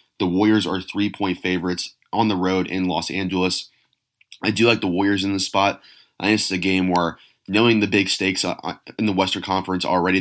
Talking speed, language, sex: 205 wpm, English, male